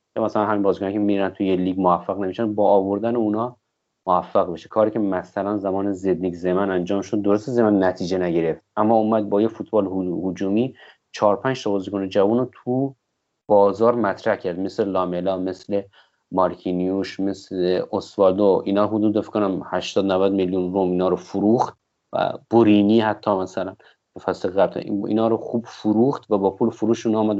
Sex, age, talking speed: male, 30-49, 160 wpm